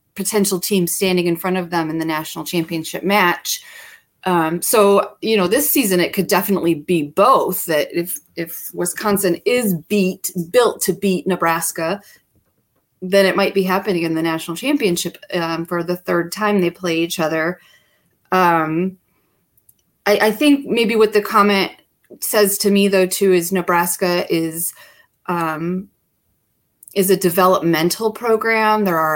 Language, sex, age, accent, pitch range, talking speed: English, female, 30-49, American, 165-200 Hz, 155 wpm